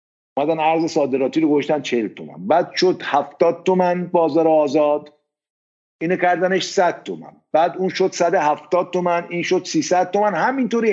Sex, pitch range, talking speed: male, 140-190 Hz, 150 wpm